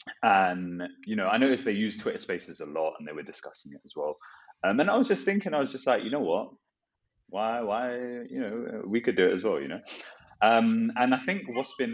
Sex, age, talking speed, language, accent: male, 20-39, 245 wpm, English, British